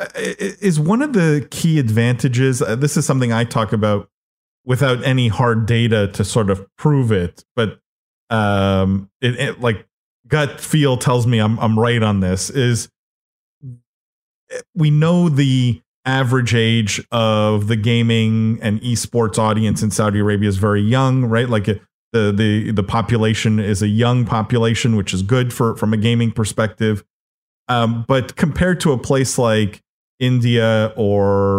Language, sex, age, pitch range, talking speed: English, male, 30-49, 105-130 Hz, 155 wpm